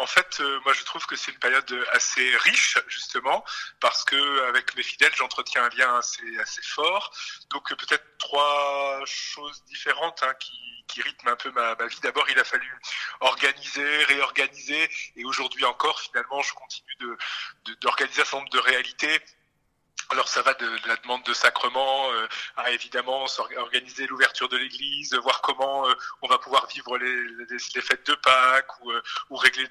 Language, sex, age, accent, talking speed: French, male, 30-49, French, 180 wpm